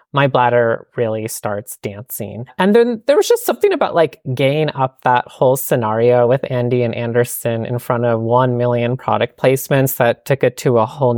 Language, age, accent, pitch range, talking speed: English, 20-39, American, 120-155 Hz, 190 wpm